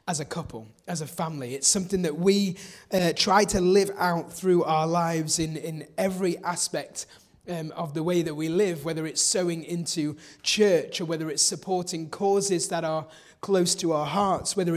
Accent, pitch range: British, 160-195 Hz